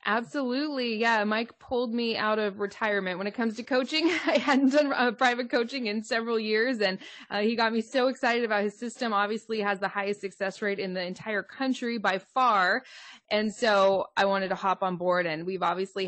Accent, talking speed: American, 205 wpm